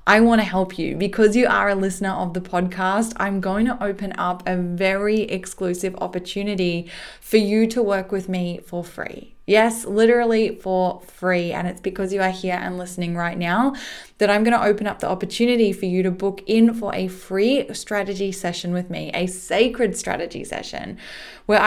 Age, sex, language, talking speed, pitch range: 10-29, female, English, 190 wpm, 185-225 Hz